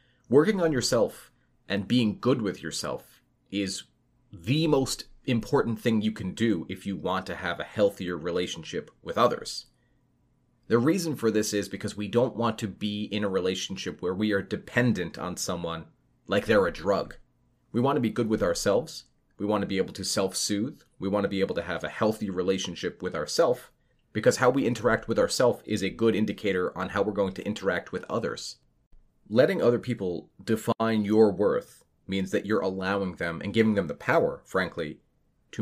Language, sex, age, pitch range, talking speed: English, male, 30-49, 95-115 Hz, 190 wpm